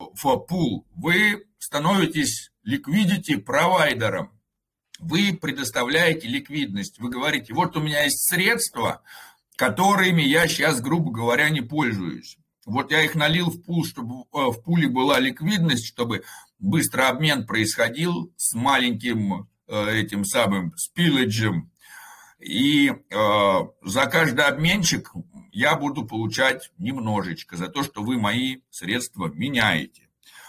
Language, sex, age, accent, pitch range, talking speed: Russian, male, 60-79, native, 120-175 Hz, 110 wpm